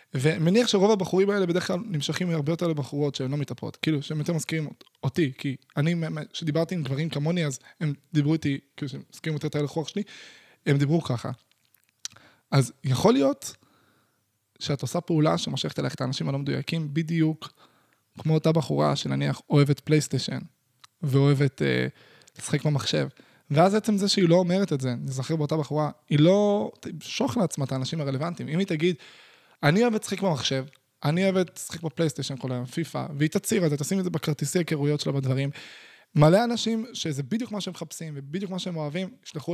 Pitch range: 145-190 Hz